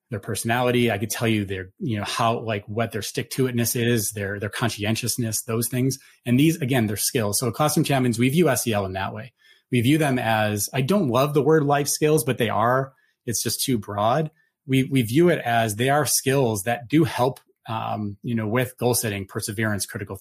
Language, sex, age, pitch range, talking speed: English, male, 30-49, 105-130 Hz, 220 wpm